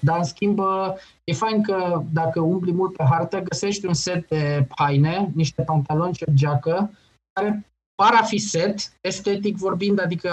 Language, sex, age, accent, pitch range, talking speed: Romanian, male, 20-39, native, 130-175 Hz, 170 wpm